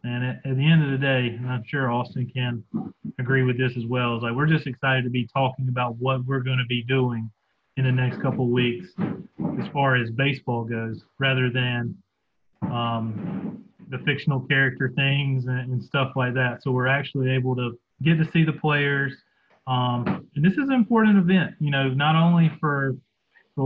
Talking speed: 200 wpm